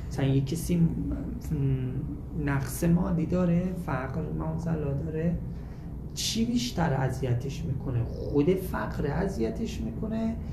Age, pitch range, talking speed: 30-49, 135-170 Hz, 90 wpm